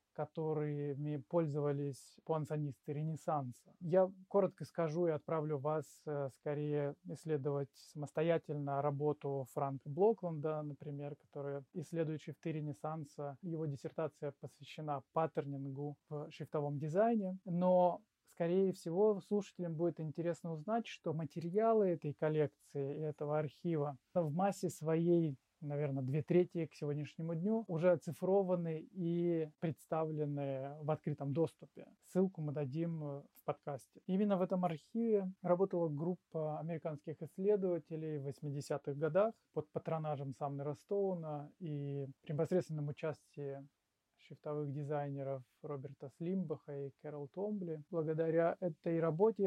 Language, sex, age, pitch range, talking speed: Russian, male, 20-39, 145-175 Hz, 110 wpm